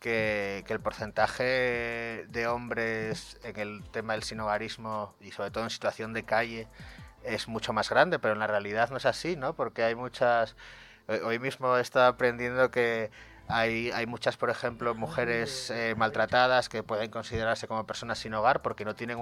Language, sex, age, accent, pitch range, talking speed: Spanish, male, 30-49, Spanish, 110-120 Hz, 180 wpm